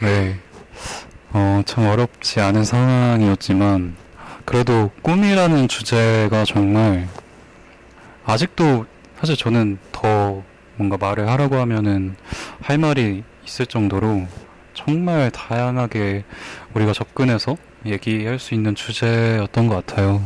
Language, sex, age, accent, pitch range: Korean, male, 20-39, native, 100-125 Hz